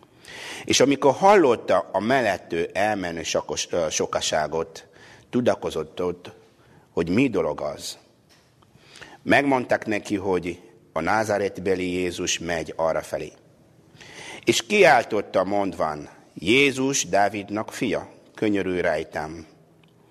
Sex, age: male, 60-79